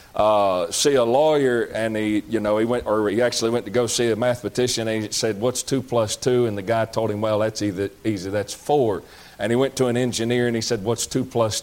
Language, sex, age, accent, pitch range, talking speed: English, male, 40-59, American, 110-140 Hz, 250 wpm